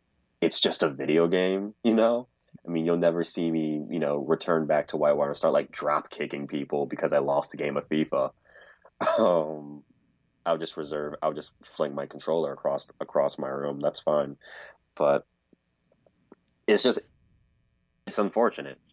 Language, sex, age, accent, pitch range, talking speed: English, male, 20-39, American, 75-95 Hz, 165 wpm